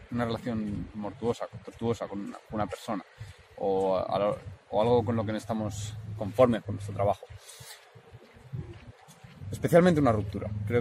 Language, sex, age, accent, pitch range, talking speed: Spanish, male, 20-39, Spanish, 105-130 Hz, 140 wpm